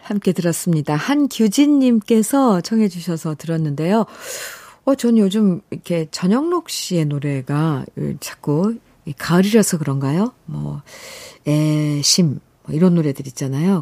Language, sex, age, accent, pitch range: Korean, female, 50-69, native, 165-275 Hz